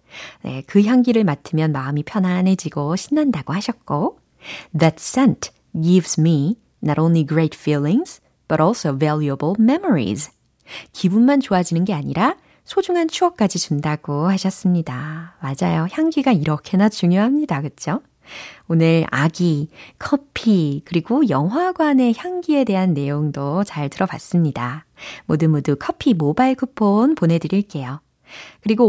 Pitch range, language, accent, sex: 155-240 Hz, Korean, native, female